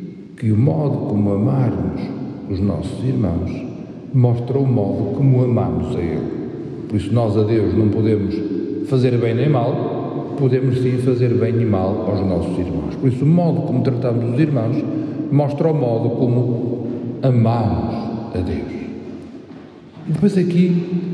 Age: 50-69